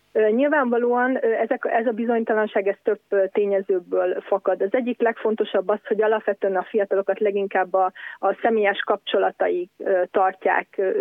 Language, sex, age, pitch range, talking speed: Hungarian, female, 30-49, 195-220 Hz, 115 wpm